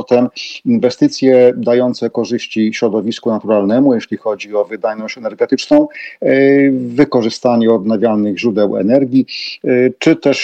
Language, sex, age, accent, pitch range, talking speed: Polish, male, 40-59, native, 120-155 Hz, 100 wpm